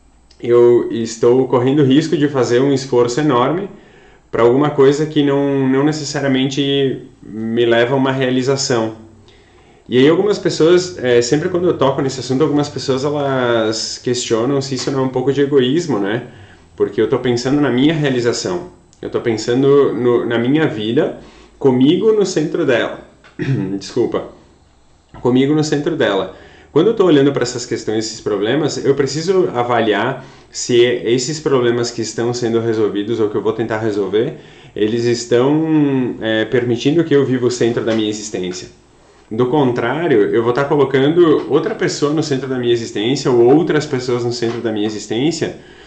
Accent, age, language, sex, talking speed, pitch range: Brazilian, 30-49, Portuguese, male, 165 wpm, 115-145 Hz